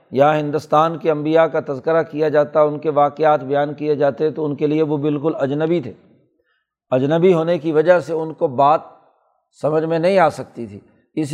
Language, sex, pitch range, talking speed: Urdu, male, 145-165 Hz, 195 wpm